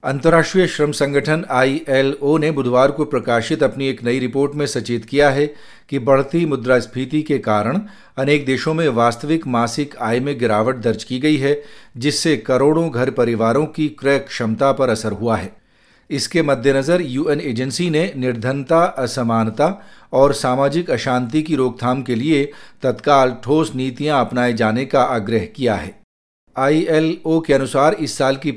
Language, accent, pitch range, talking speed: Hindi, native, 125-150 Hz, 155 wpm